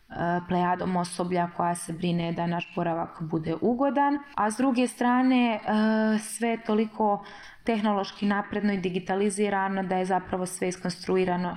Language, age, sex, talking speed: Croatian, 20-39, female, 130 wpm